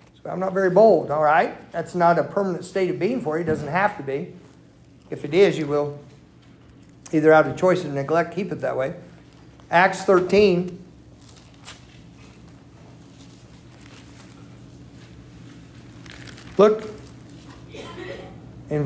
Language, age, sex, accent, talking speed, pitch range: English, 50-69, male, American, 125 wpm, 160-200 Hz